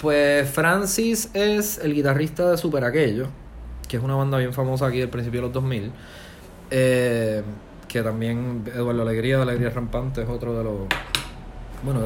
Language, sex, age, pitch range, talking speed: English, male, 20-39, 110-135 Hz, 165 wpm